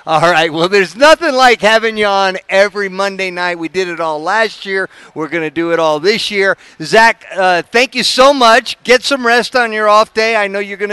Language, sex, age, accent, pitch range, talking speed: English, male, 50-69, American, 155-215 Hz, 235 wpm